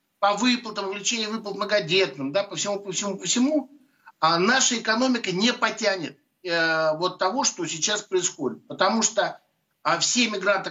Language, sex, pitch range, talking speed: Russian, male, 185-235 Hz, 155 wpm